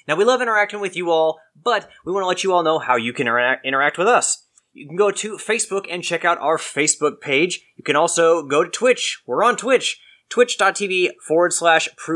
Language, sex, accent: English, male, American